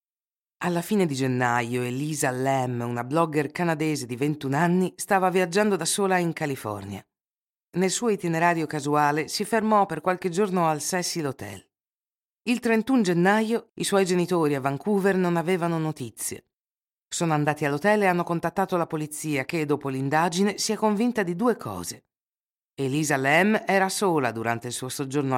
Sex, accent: female, native